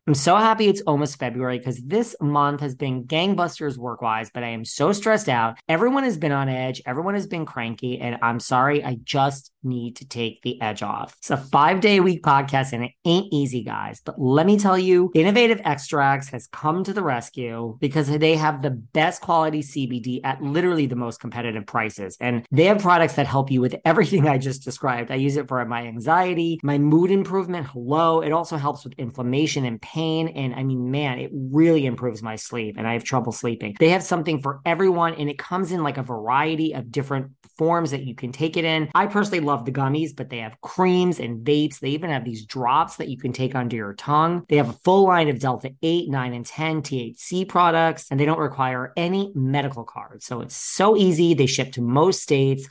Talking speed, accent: 215 wpm, American